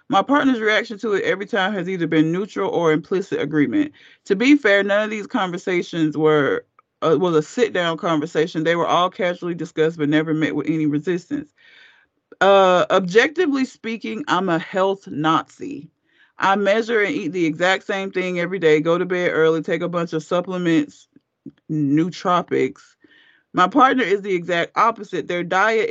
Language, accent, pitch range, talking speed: English, American, 160-210 Hz, 170 wpm